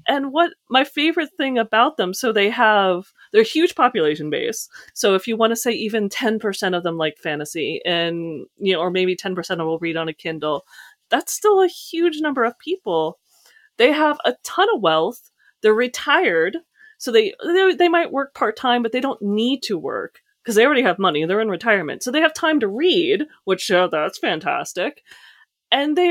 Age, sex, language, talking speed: 30-49, female, English, 200 wpm